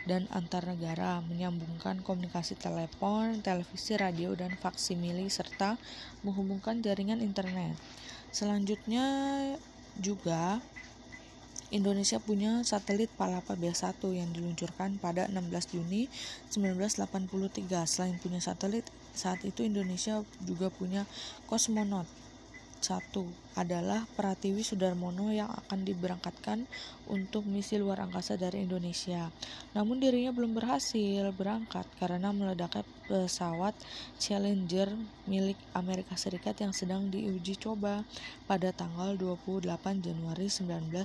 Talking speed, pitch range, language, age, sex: 100 wpm, 180-210 Hz, Indonesian, 20-39, female